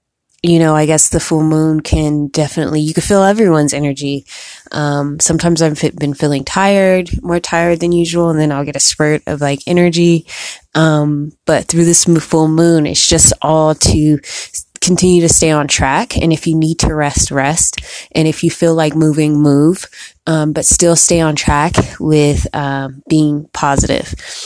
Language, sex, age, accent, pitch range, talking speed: English, female, 20-39, American, 150-170 Hz, 180 wpm